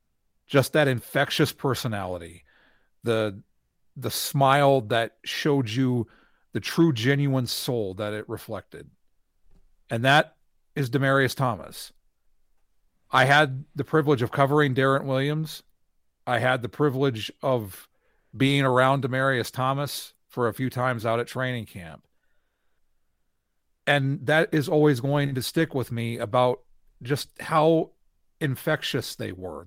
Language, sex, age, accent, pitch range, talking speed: English, male, 40-59, American, 110-145 Hz, 125 wpm